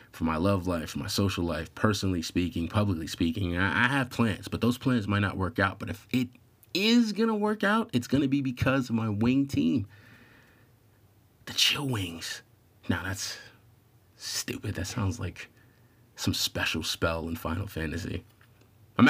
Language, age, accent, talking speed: English, 30-49, American, 175 wpm